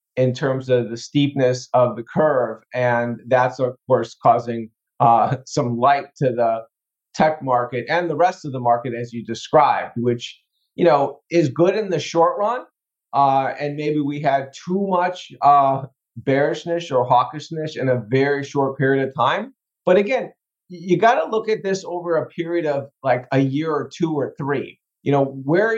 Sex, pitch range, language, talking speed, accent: male, 130-175 Hz, English, 180 wpm, American